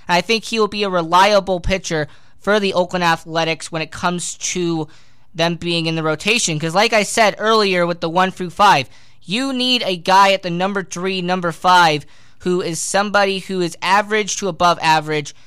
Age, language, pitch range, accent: 20-39, English, 155-195 Hz, American